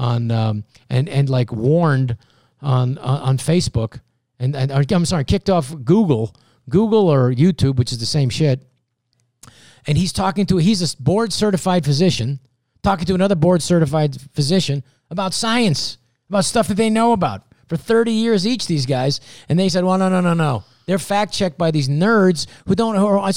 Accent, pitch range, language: American, 120-170 Hz, English